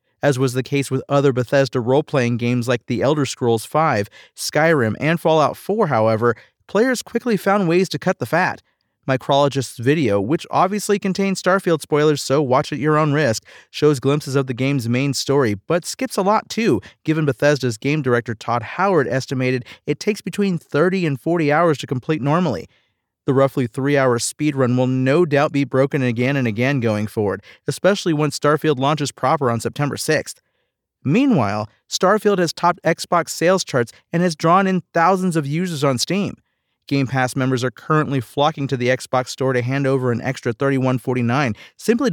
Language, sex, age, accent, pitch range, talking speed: English, male, 40-59, American, 130-160 Hz, 180 wpm